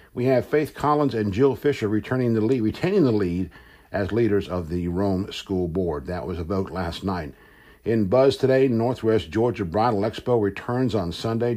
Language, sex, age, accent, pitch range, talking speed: English, male, 60-79, American, 95-125 Hz, 185 wpm